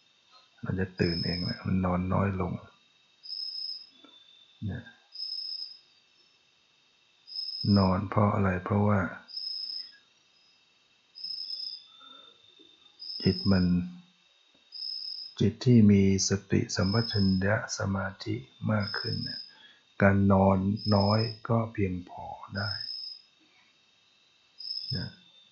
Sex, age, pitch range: male, 60-79, 95-110 Hz